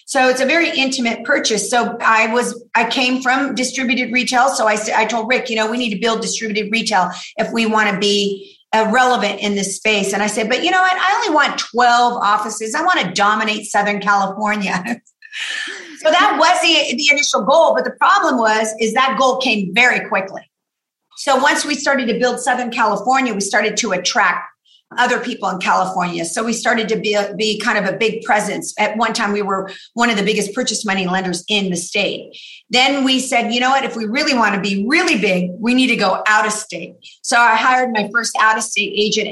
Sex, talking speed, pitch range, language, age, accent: female, 220 wpm, 205-250 Hz, English, 50-69, American